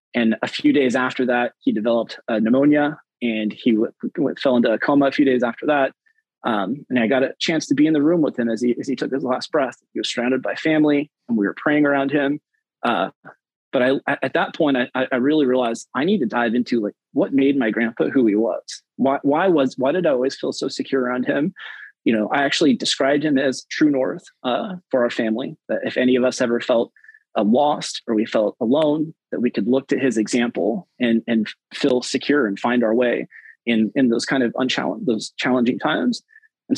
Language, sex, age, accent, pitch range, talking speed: English, male, 30-49, American, 120-165 Hz, 230 wpm